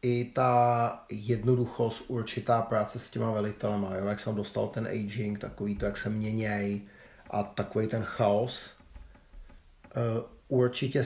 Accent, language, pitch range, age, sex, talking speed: native, Czech, 110-120 Hz, 40-59, male, 125 wpm